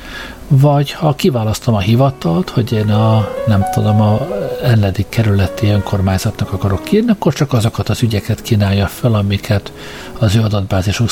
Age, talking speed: 60-79, 145 wpm